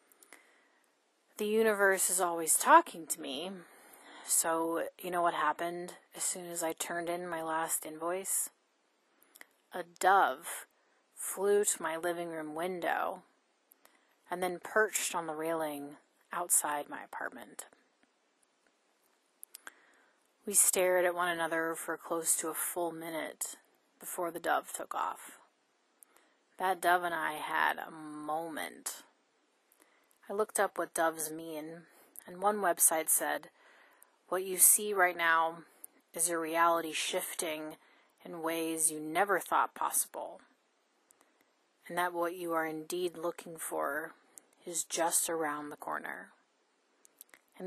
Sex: female